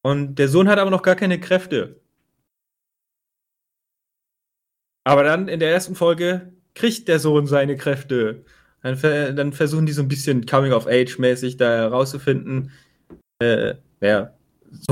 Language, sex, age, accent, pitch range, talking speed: German, male, 30-49, German, 140-185 Hz, 130 wpm